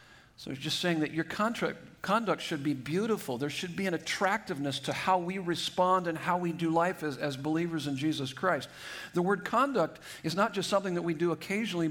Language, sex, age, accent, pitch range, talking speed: English, male, 50-69, American, 150-175 Hz, 200 wpm